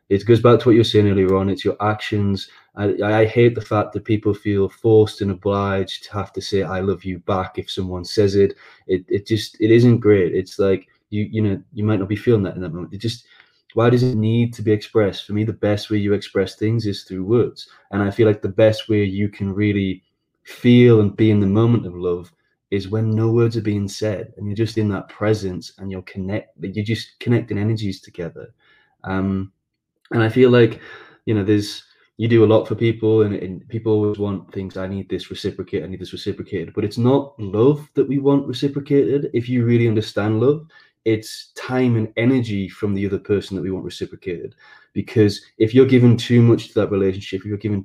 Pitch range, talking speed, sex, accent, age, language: 100-115 Hz, 225 wpm, male, British, 20-39, English